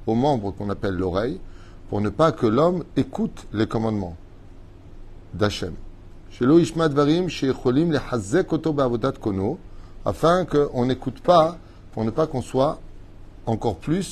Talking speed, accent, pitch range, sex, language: 100 wpm, French, 100-140 Hz, male, French